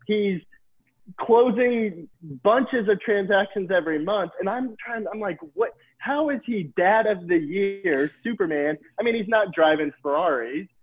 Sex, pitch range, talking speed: male, 140-200 Hz, 150 wpm